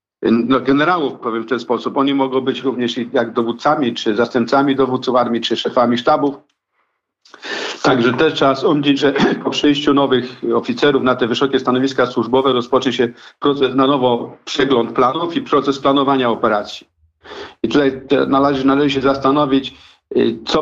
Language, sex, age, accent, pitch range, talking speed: Polish, male, 50-69, native, 125-140 Hz, 145 wpm